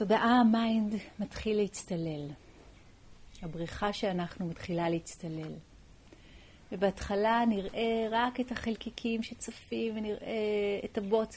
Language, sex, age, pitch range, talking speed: Hebrew, female, 40-59, 175-225 Hz, 90 wpm